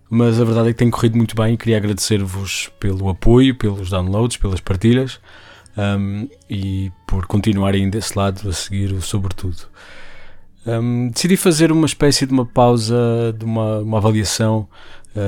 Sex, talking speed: male, 150 wpm